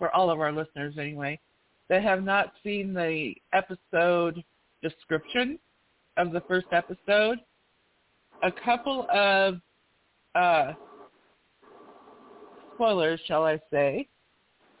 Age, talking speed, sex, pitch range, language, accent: 50-69, 100 wpm, female, 160-200 Hz, English, American